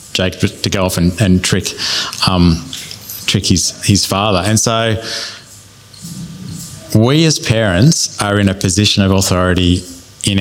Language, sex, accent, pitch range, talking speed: English, male, Australian, 95-120 Hz, 140 wpm